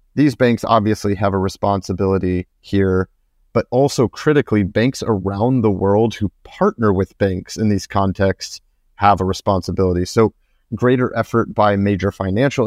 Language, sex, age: English, male, 30-49